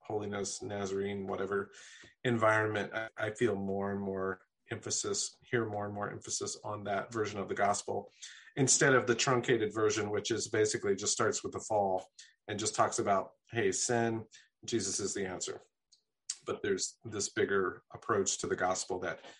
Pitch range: 100-115 Hz